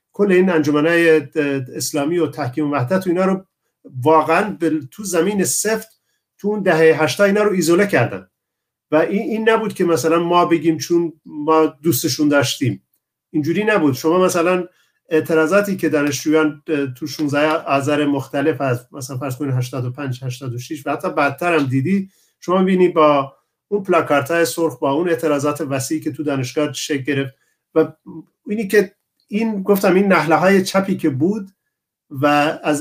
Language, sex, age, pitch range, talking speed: Persian, male, 50-69, 150-190 Hz, 150 wpm